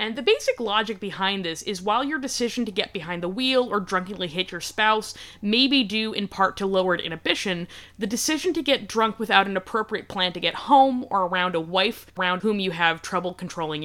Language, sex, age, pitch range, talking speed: English, female, 20-39, 180-230 Hz, 215 wpm